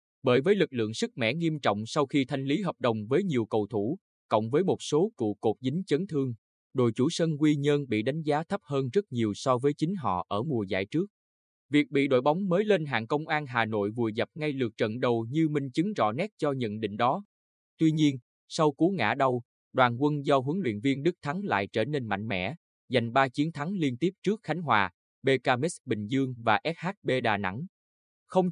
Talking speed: 230 wpm